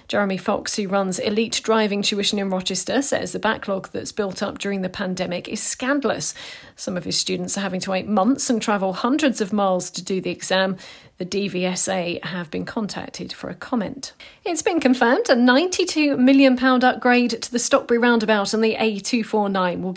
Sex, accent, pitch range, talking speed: female, British, 190-255 Hz, 185 wpm